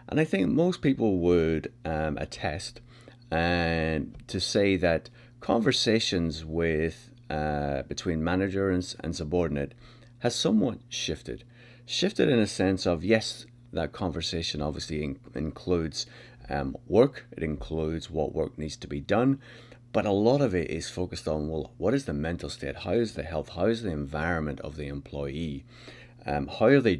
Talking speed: 165 wpm